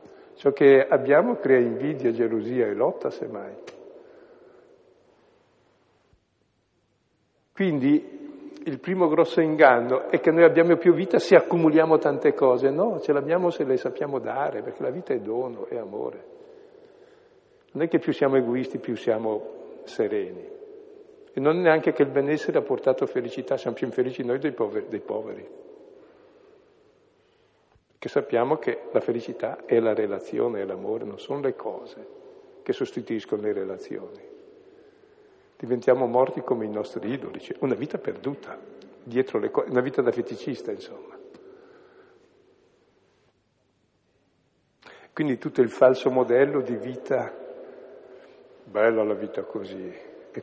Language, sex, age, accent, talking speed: Italian, male, 60-79, native, 135 wpm